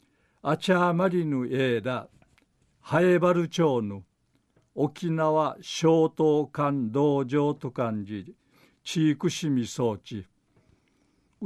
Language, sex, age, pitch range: Japanese, male, 50-69, 125-160 Hz